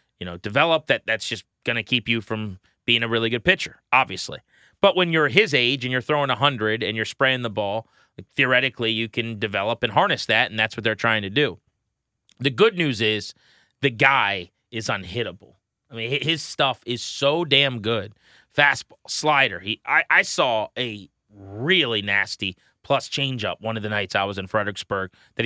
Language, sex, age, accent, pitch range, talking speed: English, male, 30-49, American, 110-145 Hz, 195 wpm